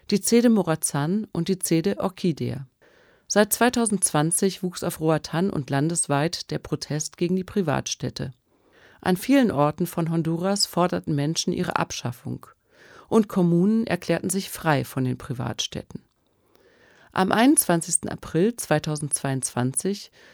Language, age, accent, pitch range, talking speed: German, 40-59, German, 155-200 Hz, 120 wpm